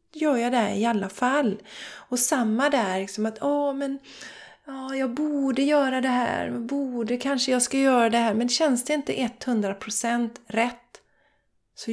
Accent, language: native, Swedish